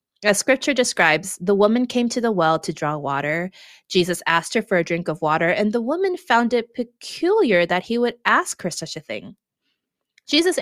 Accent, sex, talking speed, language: American, female, 200 wpm, English